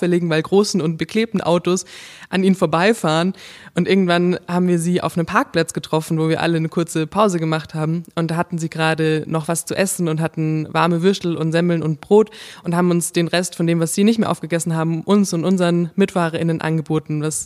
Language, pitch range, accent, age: German, 160-180 Hz, German, 20-39